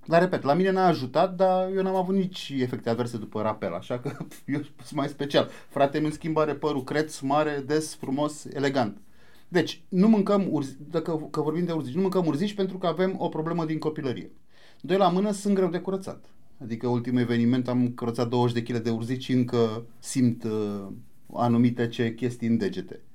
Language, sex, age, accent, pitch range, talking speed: Romanian, male, 30-49, native, 120-185 Hz, 190 wpm